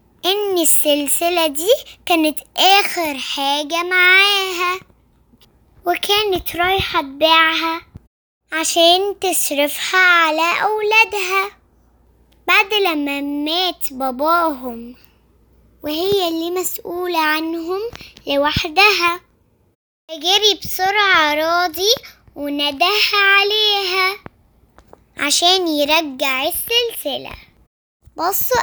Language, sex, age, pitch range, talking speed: Arabic, male, 10-29, 310-400 Hz, 65 wpm